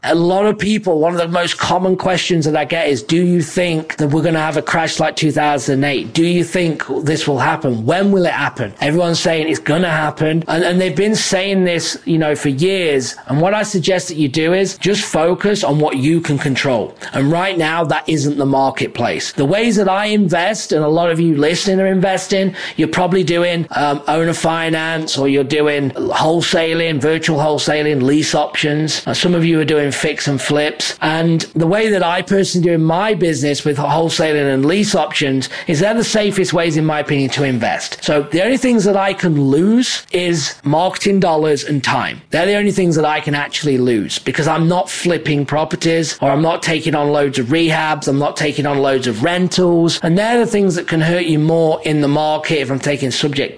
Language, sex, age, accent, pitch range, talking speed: English, male, 30-49, British, 145-175 Hz, 215 wpm